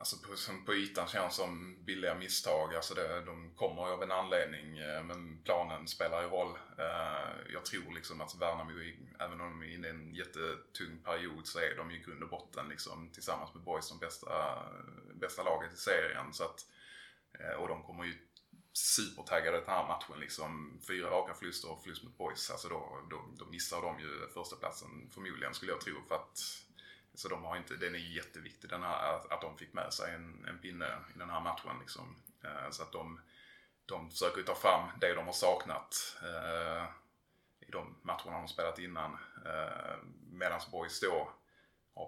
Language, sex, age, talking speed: Swedish, male, 20-39, 185 wpm